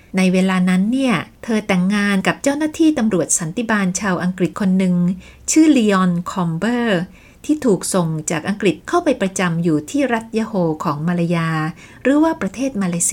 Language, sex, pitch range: Thai, female, 175-240 Hz